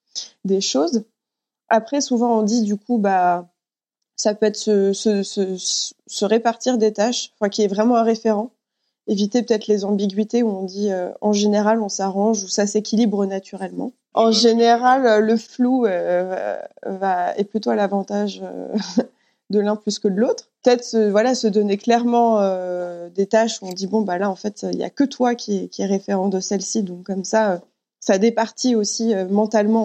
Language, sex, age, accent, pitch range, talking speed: French, female, 20-39, French, 200-235 Hz, 185 wpm